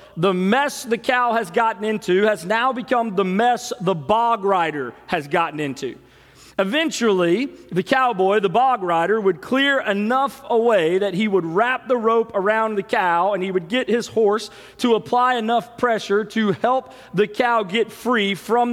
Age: 40-59